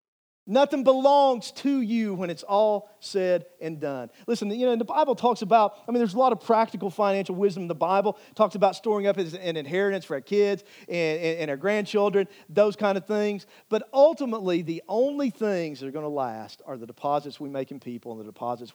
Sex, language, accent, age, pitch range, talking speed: male, English, American, 50-69, 150-220 Hz, 215 wpm